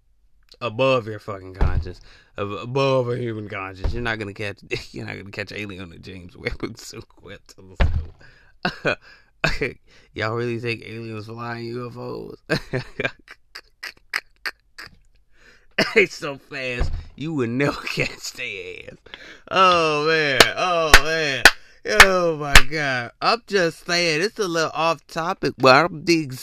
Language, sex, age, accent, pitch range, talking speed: English, male, 20-39, American, 100-145 Hz, 125 wpm